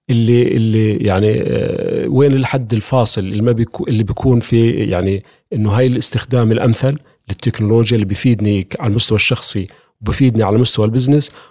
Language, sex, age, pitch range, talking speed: Arabic, male, 40-59, 105-130 Hz, 145 wpm